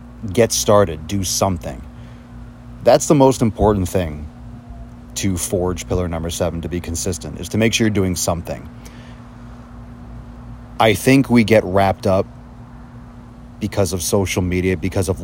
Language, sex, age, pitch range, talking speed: English, male, 30-49, 85-115 Hz, 140 wpm